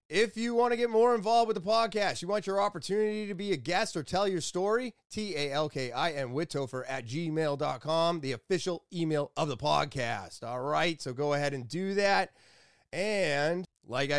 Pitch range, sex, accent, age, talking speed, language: 120-160 Hz, male, American, 30-49, 180 wpm, English